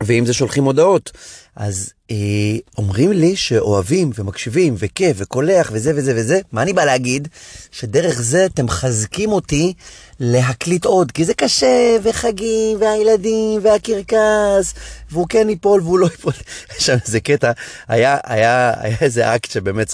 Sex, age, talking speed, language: male, 30-49, 120 wpm, Hebrew